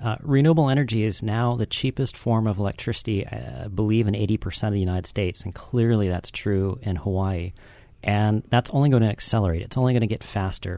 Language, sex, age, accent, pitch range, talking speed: English, male, 40-59, American, 100-120 Hz, 205 wpm